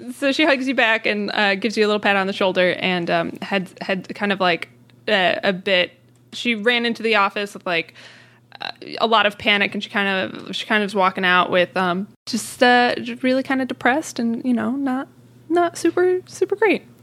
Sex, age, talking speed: female, 20-39, 220 wpm